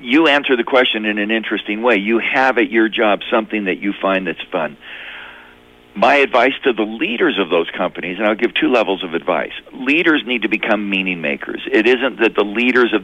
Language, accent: English, American